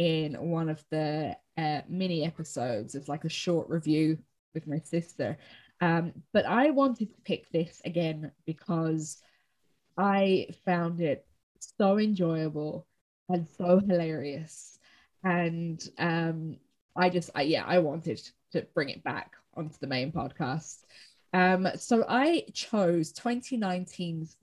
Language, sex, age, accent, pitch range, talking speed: English, female, 20-39, British, 165-195 Hz, 130 wpm